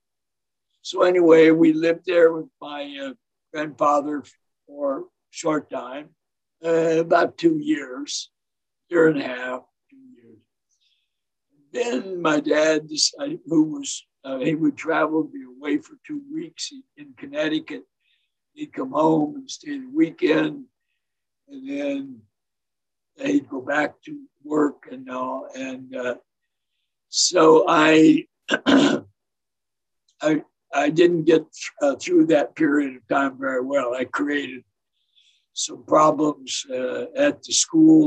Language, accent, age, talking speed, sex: English, American, 60-79, 130 wpm, male